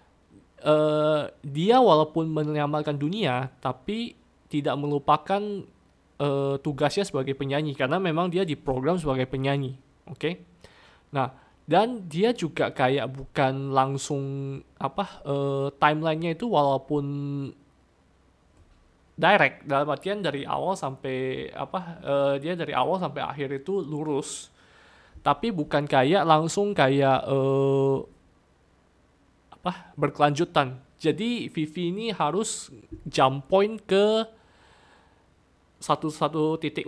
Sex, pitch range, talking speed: male, 135-175 Hz, 95 wpm